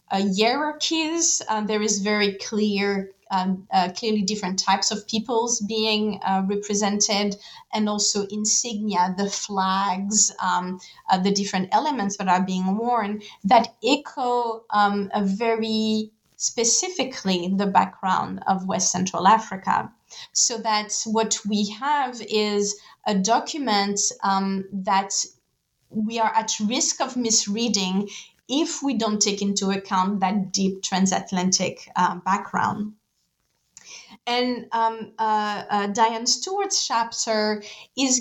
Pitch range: 195-230 Hz